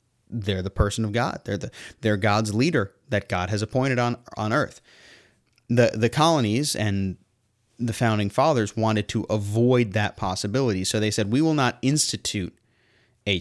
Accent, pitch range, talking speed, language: American, 100-120 Hz, 165 wpm, English